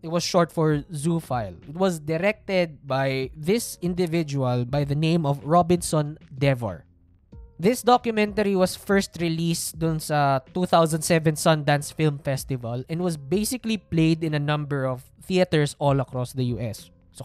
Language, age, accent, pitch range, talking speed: Filipino, 20-39, native, 140-230 Hz, 150 wpm